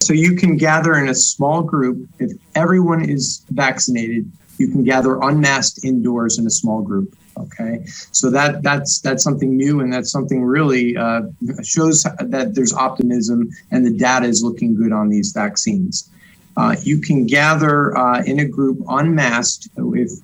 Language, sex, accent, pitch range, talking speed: English, male, American, 120-170 Hz, 165 wpm